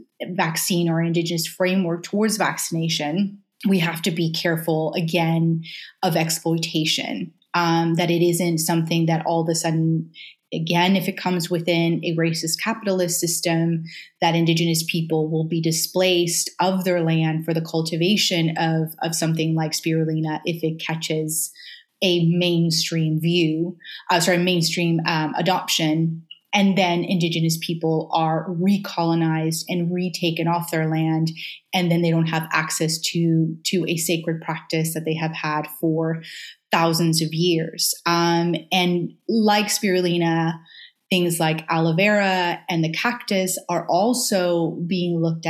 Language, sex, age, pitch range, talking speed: English, female, 20-39, 165-180 Hz, 140 wpm